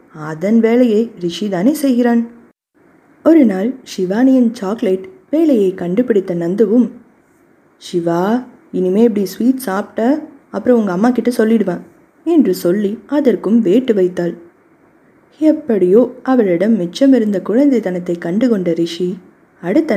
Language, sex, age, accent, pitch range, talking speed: Tamil, female, 20-39, native, 190-275 Hz, 110 wpm